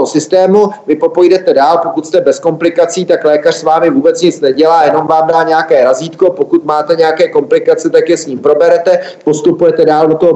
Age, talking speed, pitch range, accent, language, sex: 30-49, 190 wpm, 155-185 Hz, native, Czech, male